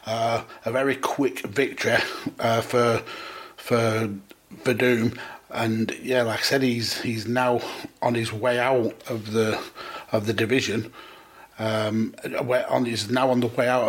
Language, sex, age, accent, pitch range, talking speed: English, male, 30-49, British, 110-120 Hz, 150 wpm